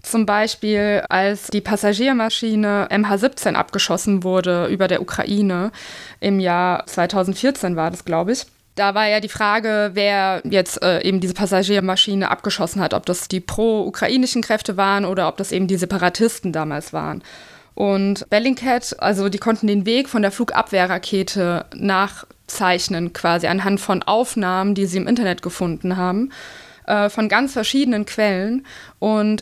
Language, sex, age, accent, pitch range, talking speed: German, female, 20-39, German, 190-220 Hz, 145 wpm